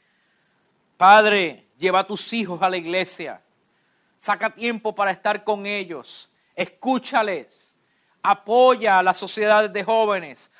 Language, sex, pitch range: English, male, 125-205 Hz